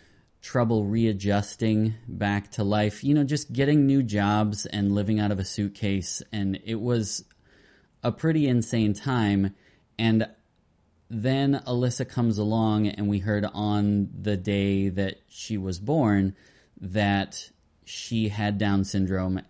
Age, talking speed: 20-39, 135 wpm